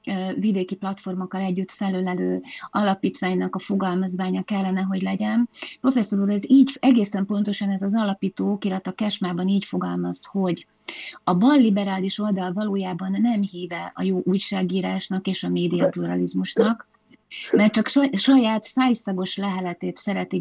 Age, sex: 30-49, female